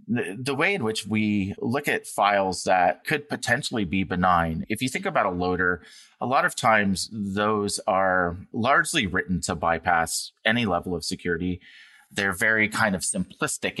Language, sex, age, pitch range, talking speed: English, male, 30-49, 85-100 Hz, 165 wpm